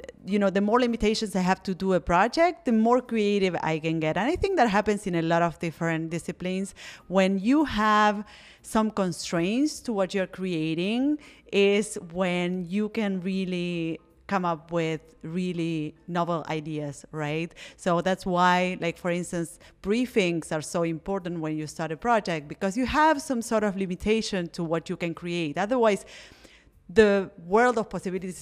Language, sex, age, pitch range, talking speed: English, female, 30-49, 170-220 Hz, 170 wpm